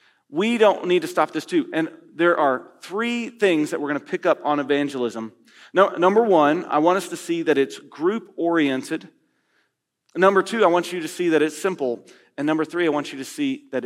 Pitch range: 140-190 Hz